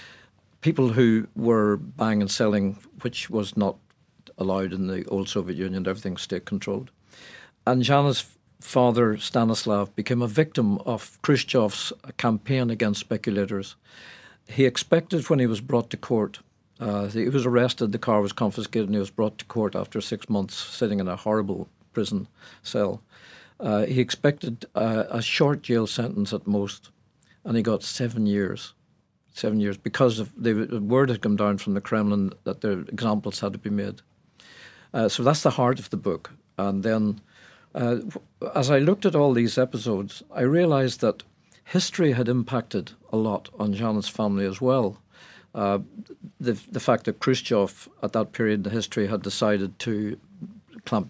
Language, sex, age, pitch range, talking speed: English, male, 50-69, 105-125 Hz, 165 wpm